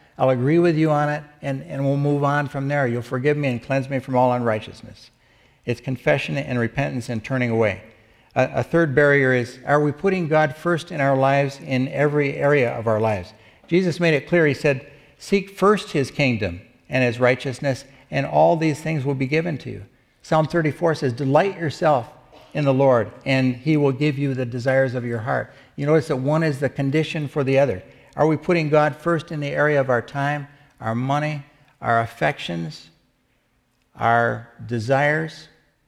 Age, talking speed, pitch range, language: 60-79, 190 wpm, 120-150 Hz, English